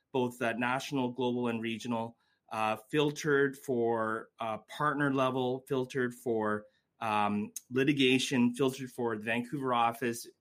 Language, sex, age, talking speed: English, male, 30-49, 120 wpm